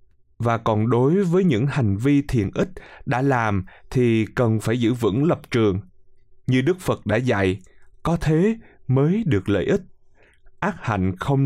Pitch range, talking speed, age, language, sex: 105-150 Hz, 170 wpm, 20-39, Vietnamese, male